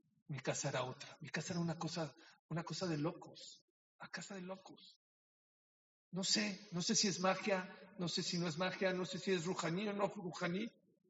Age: 50-69